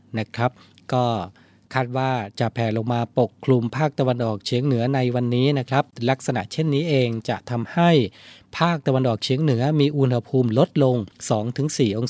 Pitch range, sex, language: 115-140 Hz, male, Thai